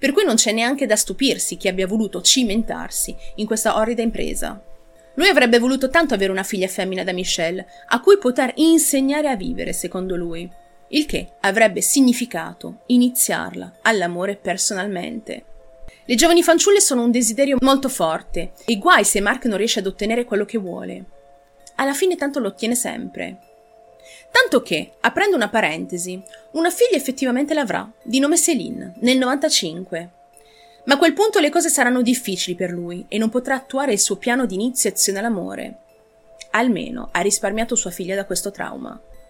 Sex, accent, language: female, native, Italian